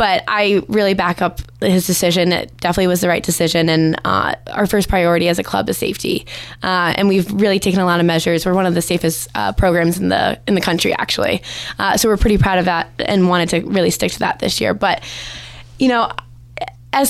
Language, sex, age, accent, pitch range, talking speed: English, female, 20-39, American, 170-205 Hz, 230 wpm